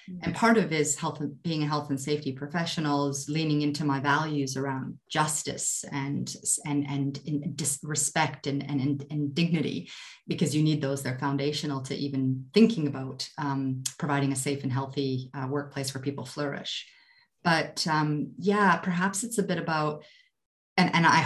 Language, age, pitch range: English, 30-49, 145-180 Hz